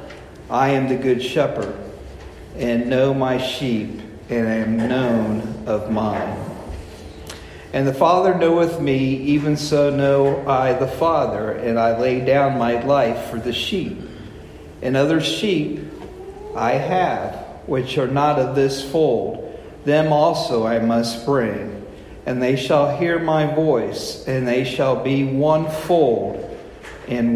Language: English